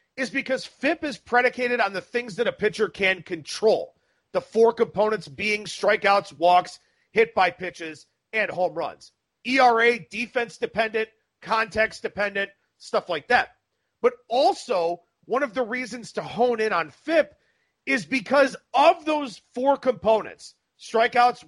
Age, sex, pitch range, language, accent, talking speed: 40-59, male, 195-265 Hz, English, American, 130 wpm